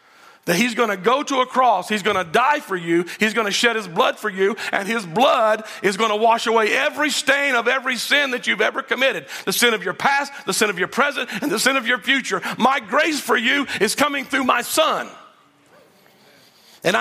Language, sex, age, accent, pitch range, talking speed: English, male, 40-59, American, 200-265 Hz, 230 wpm